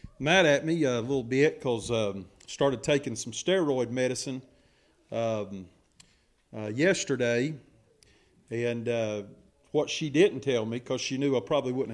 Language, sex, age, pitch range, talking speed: English, male, 40-59, 120-160 Hz, 145 wpm